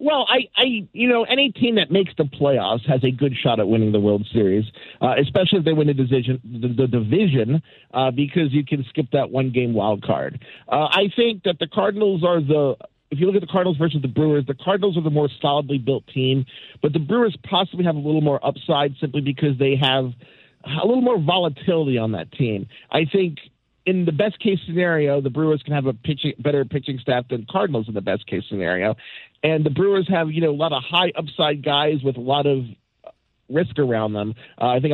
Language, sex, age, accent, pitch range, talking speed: English, male, 50-69, American, 130-170 Hz, 215 wpm